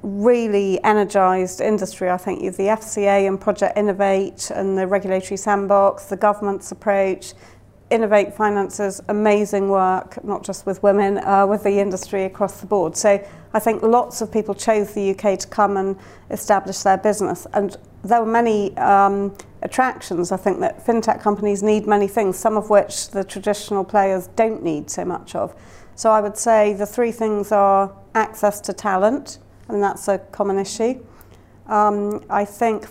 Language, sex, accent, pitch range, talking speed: English, female, British, 195-215 Hz, 165 wpm